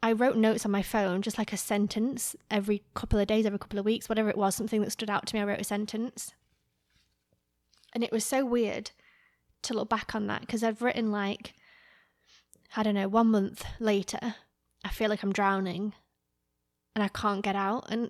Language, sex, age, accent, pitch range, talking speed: English, female, 20-39, British, 205-230 Hz, 205 wpm